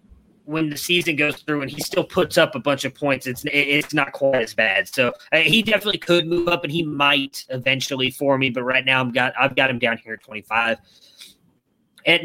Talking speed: 225 wpm